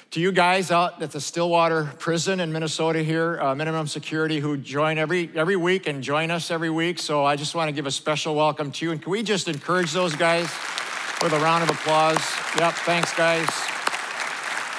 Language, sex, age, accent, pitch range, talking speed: English, male, 50-69, American, 150-180 Hz, 205 wpm